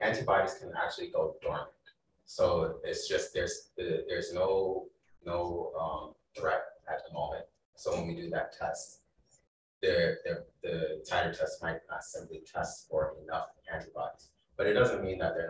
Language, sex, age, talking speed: English, male, 30-49, 160 wpm